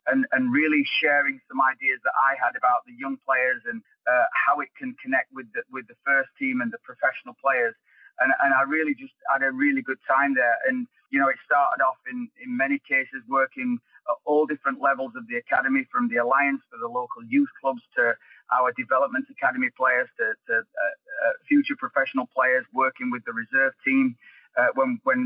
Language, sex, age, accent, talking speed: English, male, 30-49, British, 205 wpm